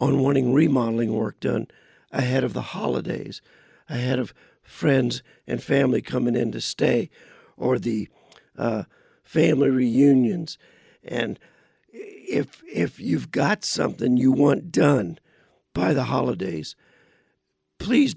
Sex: male